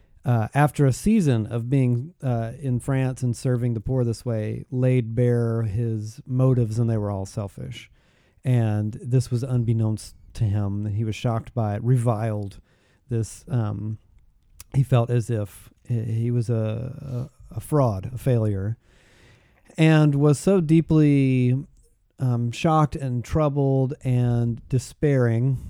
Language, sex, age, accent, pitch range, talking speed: English, male, 40-59, American, 110-130 Hz, 140 wpm